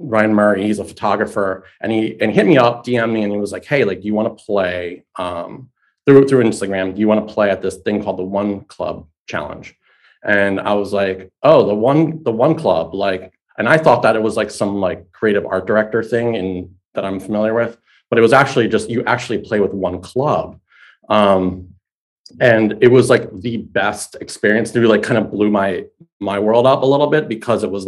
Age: 30-49